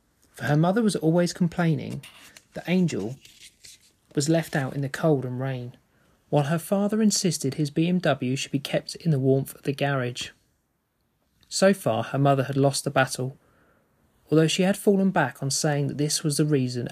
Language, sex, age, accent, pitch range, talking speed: English, male, 30-49, British, 135-175 Hz, 180 wpm